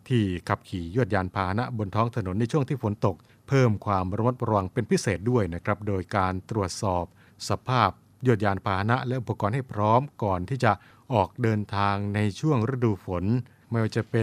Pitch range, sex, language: 100-120 Hz, male, Thai